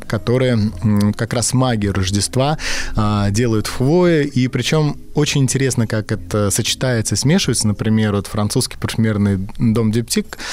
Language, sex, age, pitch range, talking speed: Russian, male, 20-39, 100-125 Hz, 125 wpm